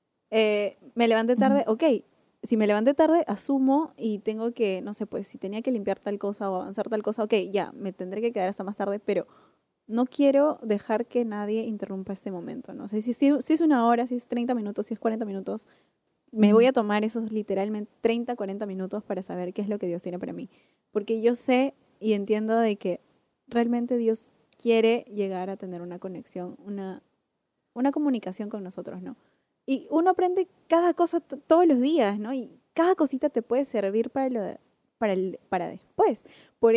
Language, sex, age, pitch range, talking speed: Spanish, female, 10-29, 205-260 Hz, 200 wpm